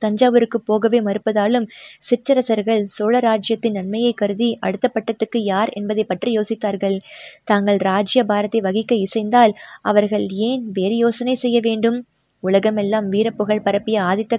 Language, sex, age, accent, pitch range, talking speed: Tamil, female, 20-39, native, 205-235 Hz, 115 wpm